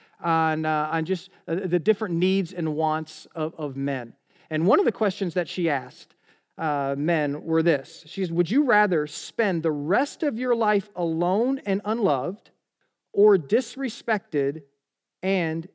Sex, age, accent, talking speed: male, 40-59, American, 160 wpm